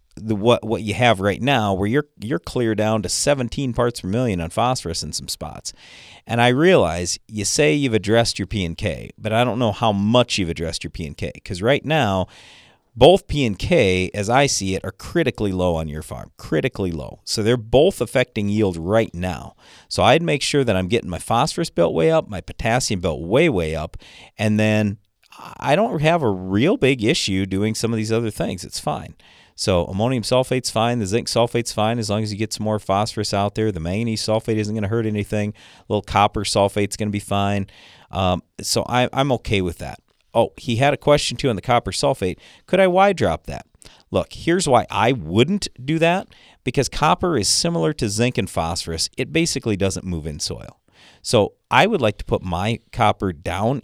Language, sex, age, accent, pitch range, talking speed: English, male, 40-59, American, 100-125 Hz, 215 wpm